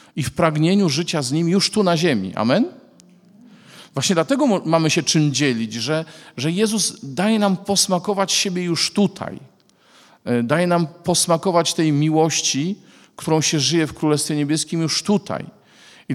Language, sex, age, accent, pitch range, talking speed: Polish, male, 40-59, native, 135-185 Hz, 150 wpm